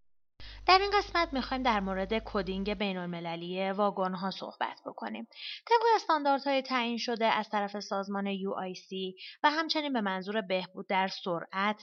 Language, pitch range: Persian, 185-260 Hz